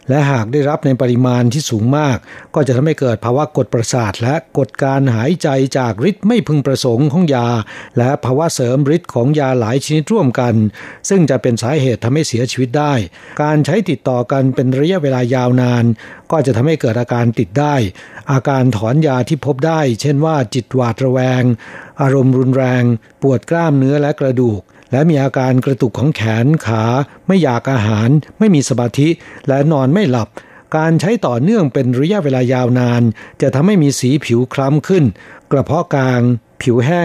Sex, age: male, 60-79